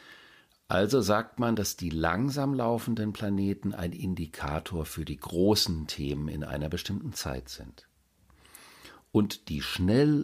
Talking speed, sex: 130 wpm, male